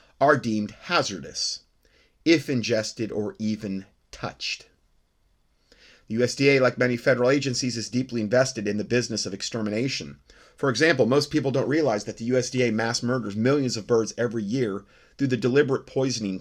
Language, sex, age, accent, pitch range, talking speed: English, male, 30-49, American, 100-125 Hz, 155 wpm